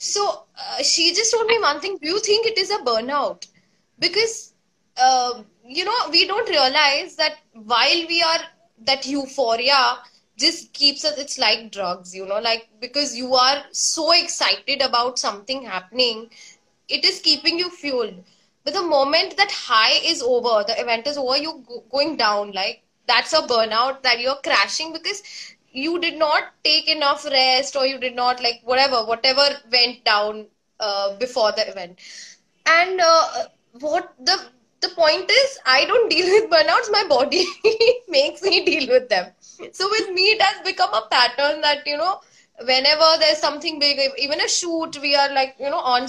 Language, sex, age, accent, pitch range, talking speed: English, female, 20-39, Indian, 240-330 Hz, 175 wpm